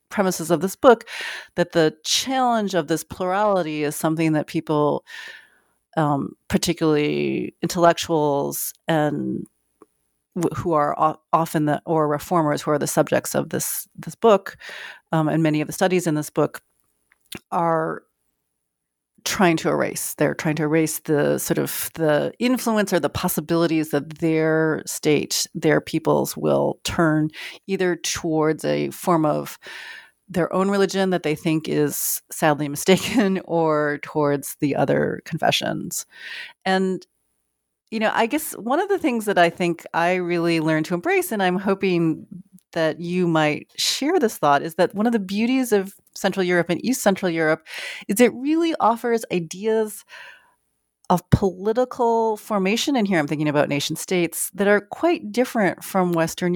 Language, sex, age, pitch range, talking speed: English, female, 40-59, 155-210 Hz, 150 wpm